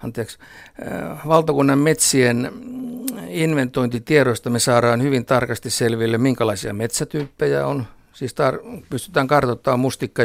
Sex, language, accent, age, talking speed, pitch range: male, Finnish, native, 60-79, 100 wpm, 115-135 Hz